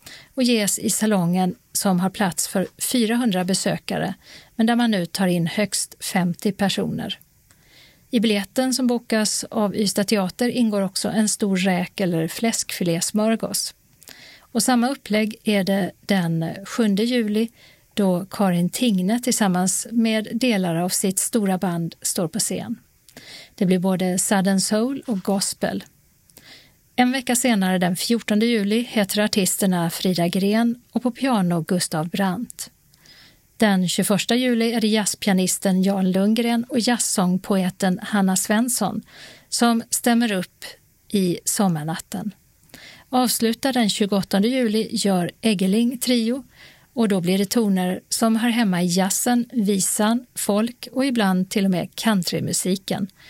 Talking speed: 135 wpm